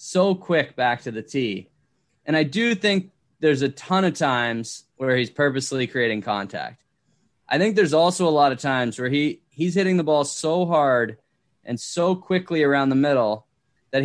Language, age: English, 10-29